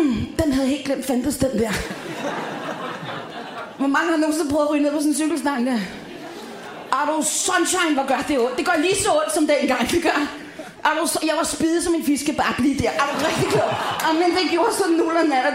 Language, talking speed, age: Danish, 235 wpm, 30-49